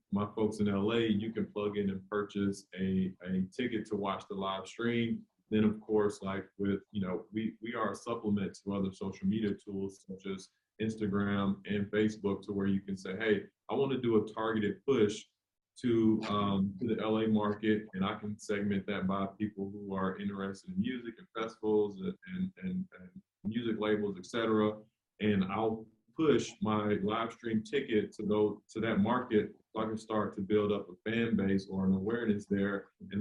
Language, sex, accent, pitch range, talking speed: English, male, American, 95-110 Hz, 190 wpm